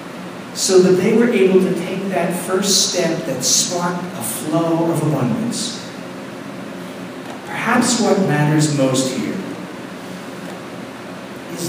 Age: 50-69